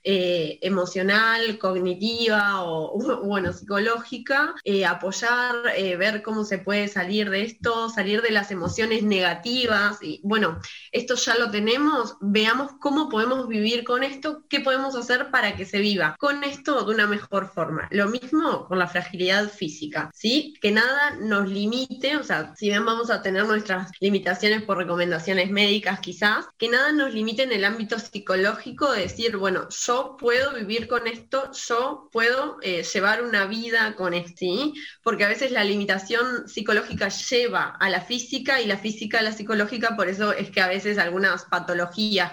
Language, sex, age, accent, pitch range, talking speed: Spanish, female, 20-39, Argentinian, 190-235 Hz, 165 wpm